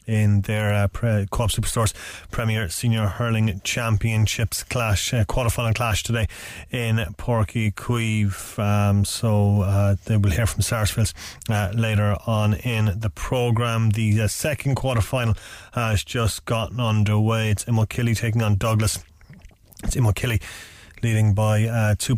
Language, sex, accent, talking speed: English, male, Irish, 140 wpm